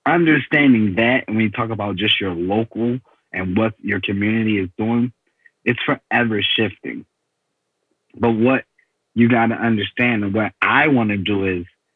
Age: 30-49